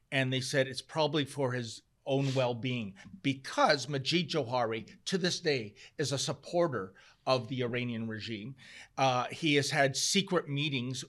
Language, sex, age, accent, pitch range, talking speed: English, male, 40-59, American, 125-155 Hz, 150 wpm